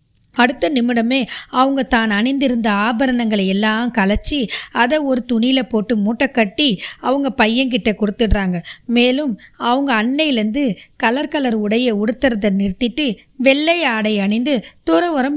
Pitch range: 220-270 Hz